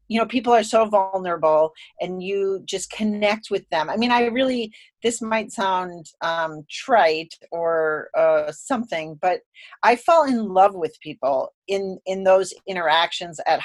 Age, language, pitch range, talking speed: 40-59, English, 165-225 Hz, 160 wpm